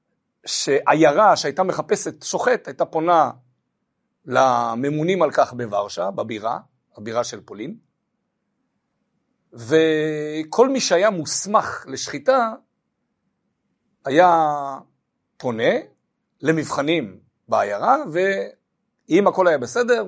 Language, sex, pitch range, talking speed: Hebrew, male, 150-220 Hz, 80 wpm